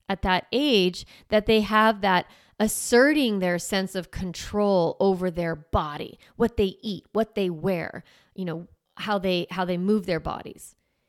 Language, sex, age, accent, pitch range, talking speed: English, female, 30-49, American, 185-245 Hz, 160 wpm